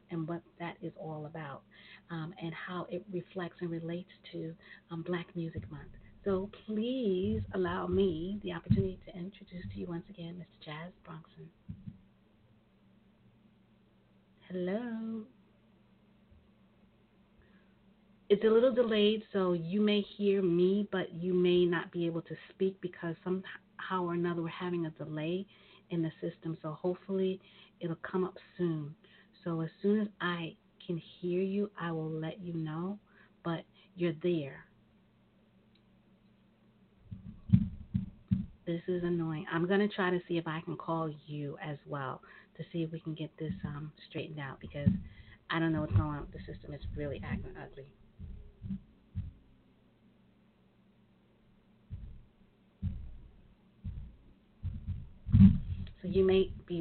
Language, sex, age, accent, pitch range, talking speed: English, female, 40-59, American, 160-190 Hz, 135 wpm